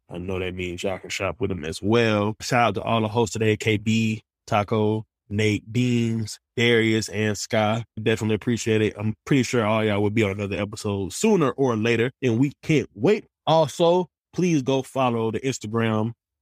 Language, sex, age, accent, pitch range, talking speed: English, male, 20-39, American, 105-125 Hz, 185 wpm